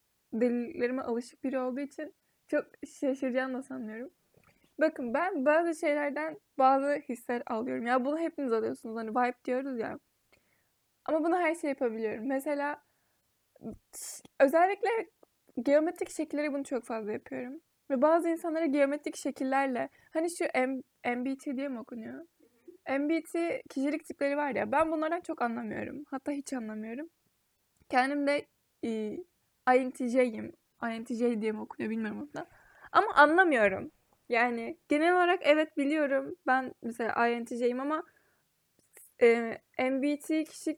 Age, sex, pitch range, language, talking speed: 20-39, female, 250-315 Hz, Turkish, 125 wpm